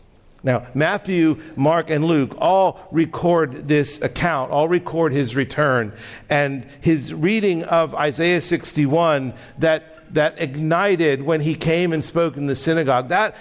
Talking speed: 140 wpm